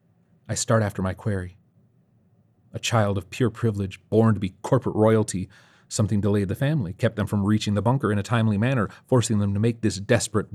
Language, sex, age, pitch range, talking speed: English, male, 30-49, 100-115 Hz, 200 wpm